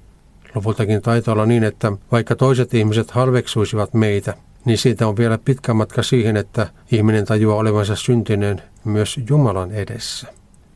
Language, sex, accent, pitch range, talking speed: Finnish, male, native, 105-125 Hz, 135 wpm